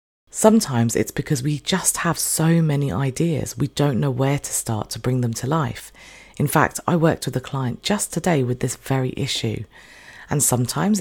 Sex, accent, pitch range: female, British, 120-160 Hz